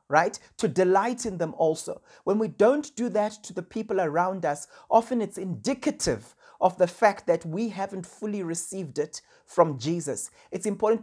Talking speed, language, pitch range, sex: 175 wpm, English, 175-225 Hz, male